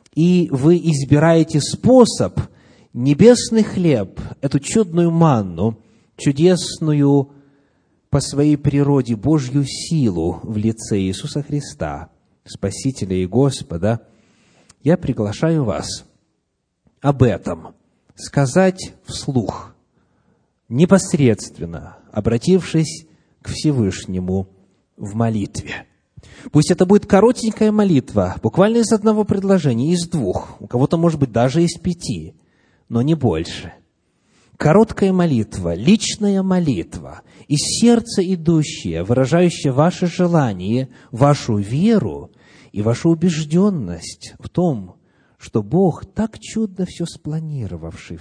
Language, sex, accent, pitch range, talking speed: Russian, male, native, 110-175 Hz, 100 wpm